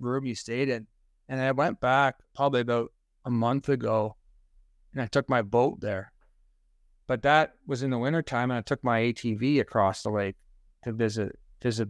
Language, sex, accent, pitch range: English, male, American, 110-140 Hz